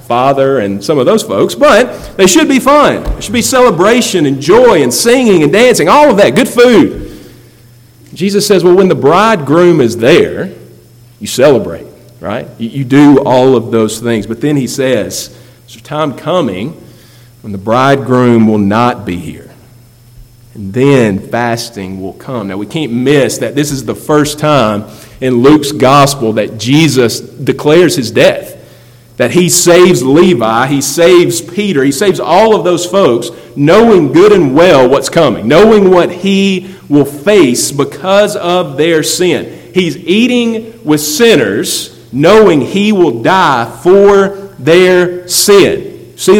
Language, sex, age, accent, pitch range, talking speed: English, male, 40-59, American, 120-185 Hz, 155 wpm